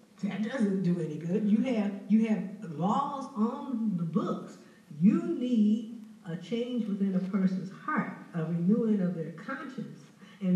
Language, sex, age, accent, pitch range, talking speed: English, female, 60-79, American, 190-225 Hz, 155 wpm